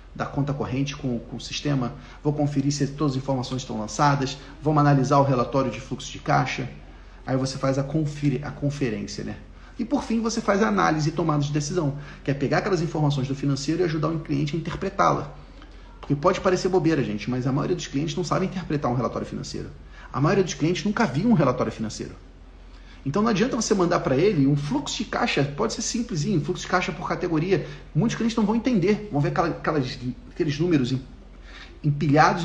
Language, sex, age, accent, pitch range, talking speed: Portuguese, male, 40-59, Brazilian, 130-180 Hz, 205 wpm